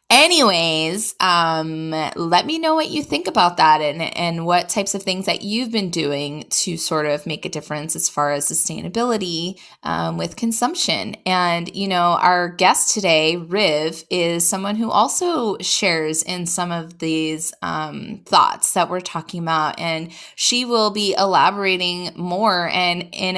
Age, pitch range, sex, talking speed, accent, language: 20-39, 160-205 Hz, female, 160 wpm, American, English